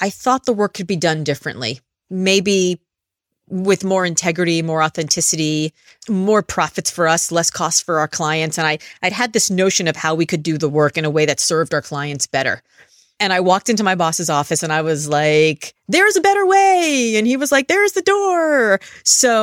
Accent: American